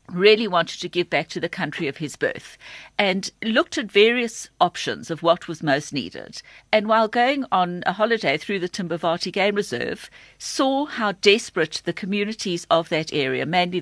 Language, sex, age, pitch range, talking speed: English, female, 50-69, 170-225 Hz, 180 wpm